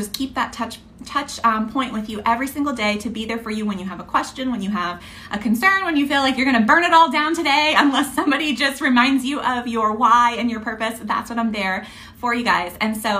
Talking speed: 265 wpm